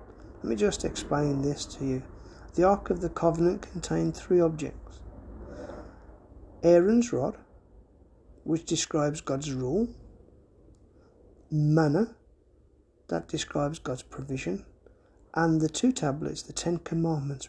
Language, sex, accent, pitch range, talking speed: English, male, British, 135-180 Hz, 115 wpm